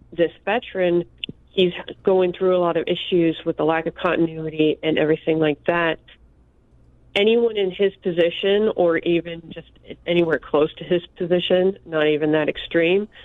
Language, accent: English, American